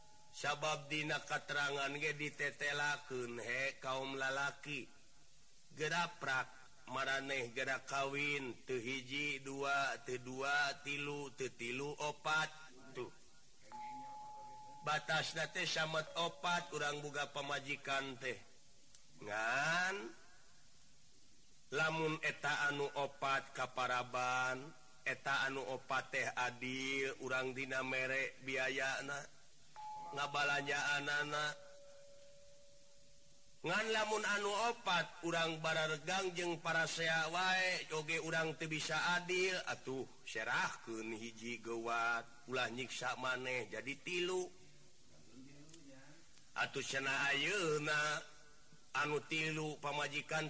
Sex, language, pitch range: male, Indonesian, 135-160 Hz